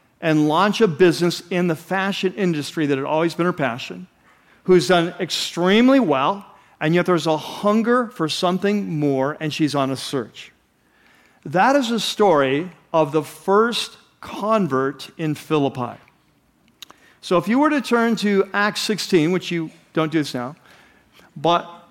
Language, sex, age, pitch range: English, male, 50-69, 155-190 Hz